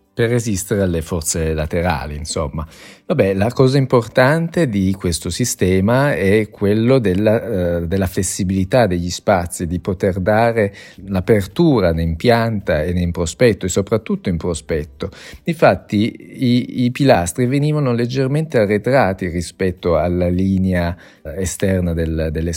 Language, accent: Italian, native